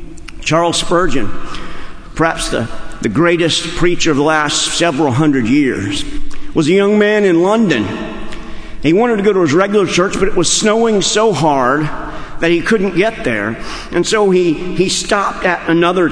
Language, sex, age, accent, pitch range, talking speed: English, male, 50-69, American, 160-215 Hz, 170 wpm